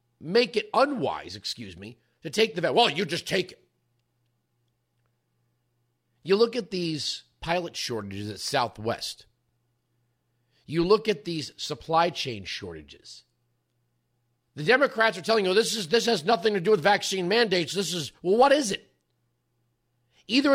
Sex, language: male, English